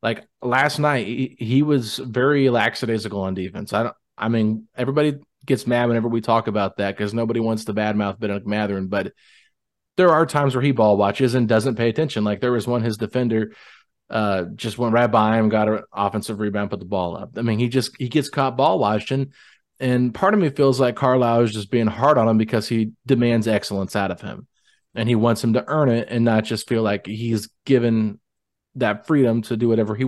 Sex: male